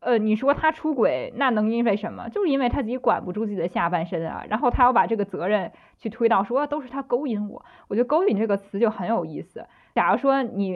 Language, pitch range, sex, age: Chinese, 195-245 Hz, female, 20-39